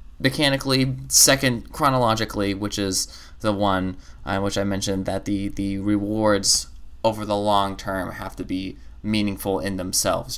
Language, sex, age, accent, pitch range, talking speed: English, male, 20-39, American, 95-125 Hz, 145 wpm